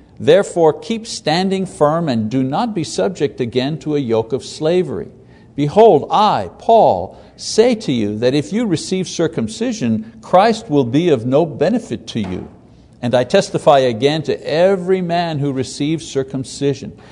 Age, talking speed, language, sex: 60-79, 155 wpm, English, male